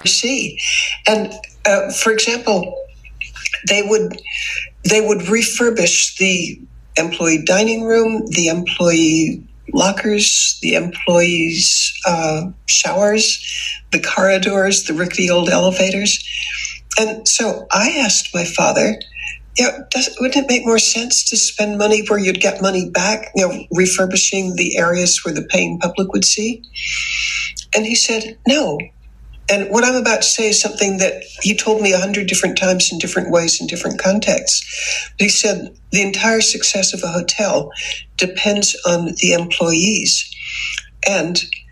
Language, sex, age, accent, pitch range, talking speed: English, female, 60-79, American, 180-220 Hz, 145 wpm